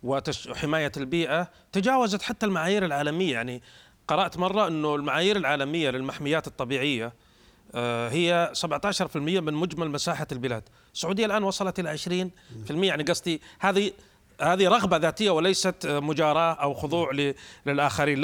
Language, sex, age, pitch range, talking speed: Arabic, male, 30-49, 135-175 Hz, 120 wpm